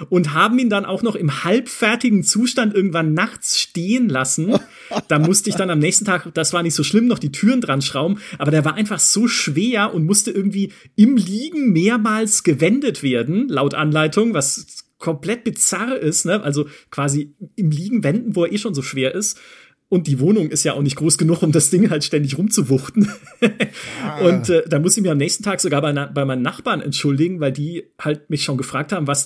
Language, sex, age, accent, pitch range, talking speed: German, male, 40-59, German, 150-210 Hz, 210 wpm